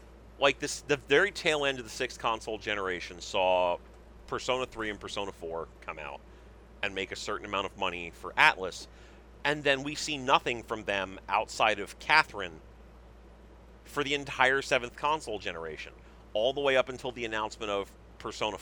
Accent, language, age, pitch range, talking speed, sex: American, English, 40-59, 95-125 Hz, 170 wpm, male